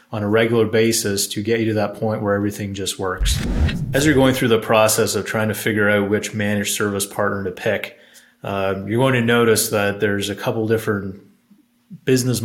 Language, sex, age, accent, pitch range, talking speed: English, male, 30-49, American, 100-115 Hz, 205 wpm